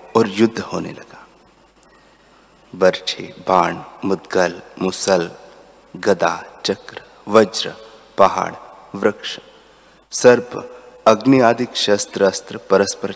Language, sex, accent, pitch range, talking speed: Hindi, male, native, 100-120 Hz, 85 wpm